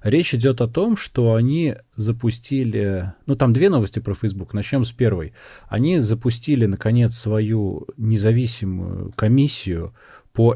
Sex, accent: male, native